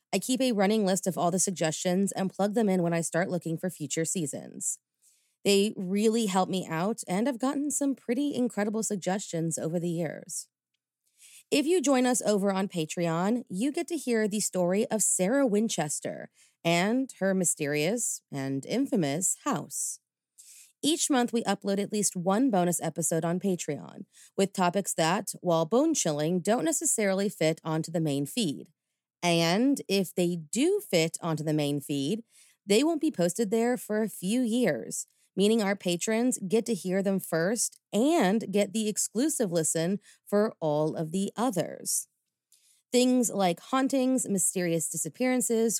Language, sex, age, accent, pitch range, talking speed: English, female, 30-49, American, 170-230 Hz, 160 wpm